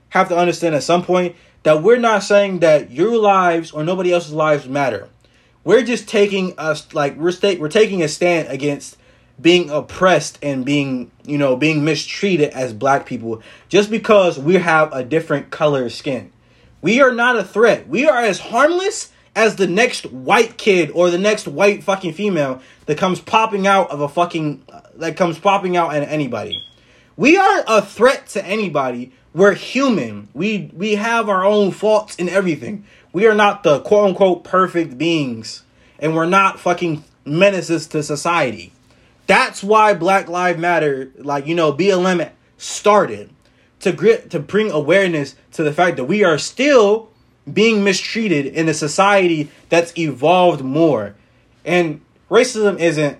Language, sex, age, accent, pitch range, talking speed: English, male, 20-39, American, 150-200 Hz, 165 wpm